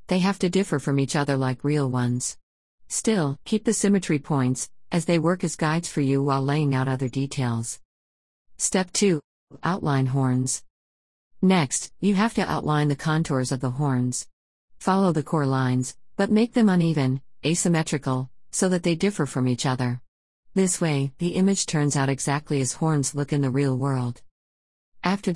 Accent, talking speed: American, 170 wpm